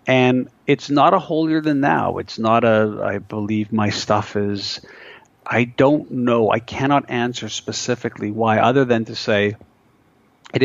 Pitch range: 105-125 Hz